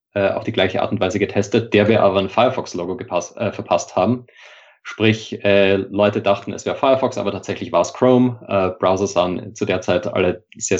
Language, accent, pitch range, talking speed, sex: German, German, 95-115 Hz, 185 wpm, male